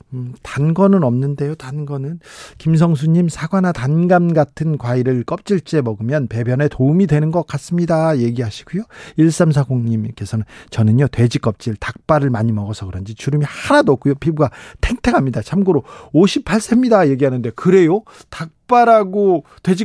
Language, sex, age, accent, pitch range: Korean, male, 40-59, native, 125-175 Hz